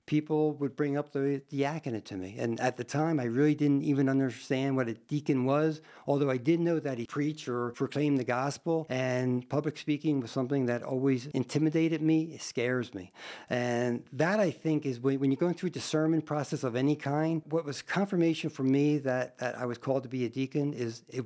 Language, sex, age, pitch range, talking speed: English, male, 50-69, 120-145 Hz, 215 wpm